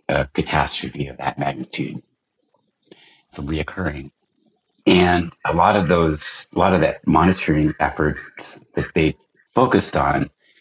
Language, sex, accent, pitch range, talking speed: English, male, American, 75-85 Hz, 125 wpm